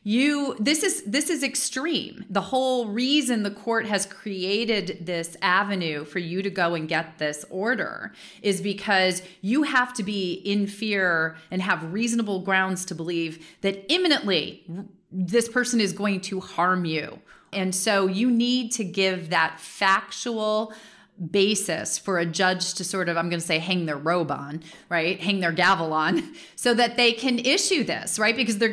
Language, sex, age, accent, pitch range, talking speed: English, female, 30-49, American, 170-220 Hz, 175 wpm